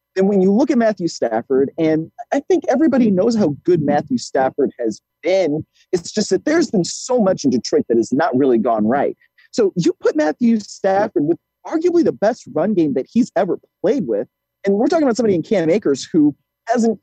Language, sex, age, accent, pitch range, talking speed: English, male, 30-49, American, 155-225 Hz, 205 wpm